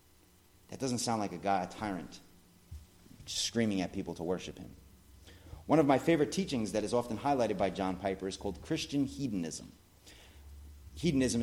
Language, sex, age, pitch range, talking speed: English, male, 30-49, 90-130 Hz, 165 wpm